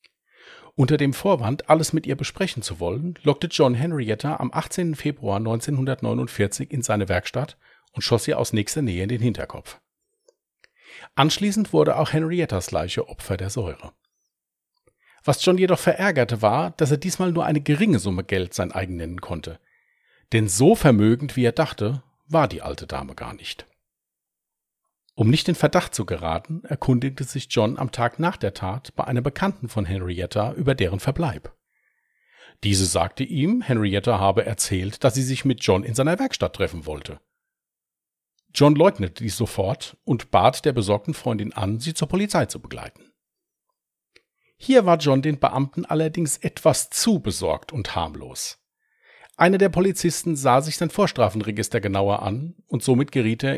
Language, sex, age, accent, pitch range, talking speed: German, male, 40-59, German, 110-165 Hz, 160 wpm